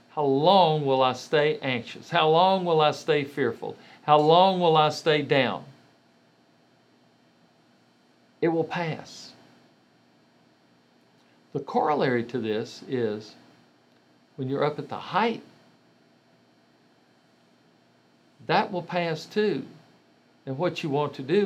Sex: male